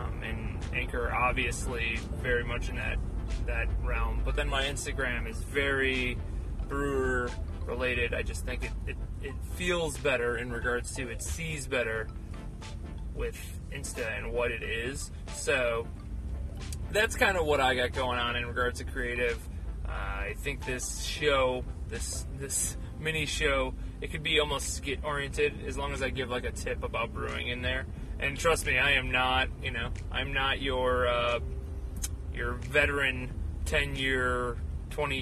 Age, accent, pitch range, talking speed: 20-39, American, 80-125 Hz, 160 wpm